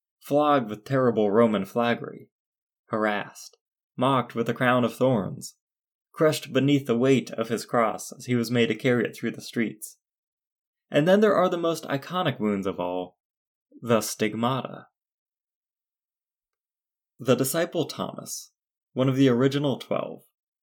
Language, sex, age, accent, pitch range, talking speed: English, male, 20-39, American, 115-145 Hz, 145 wpm